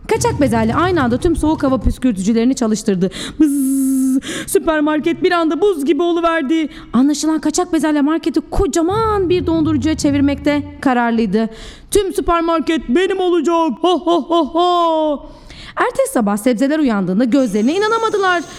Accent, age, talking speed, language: native, 30-49, 125 wpm, Turkish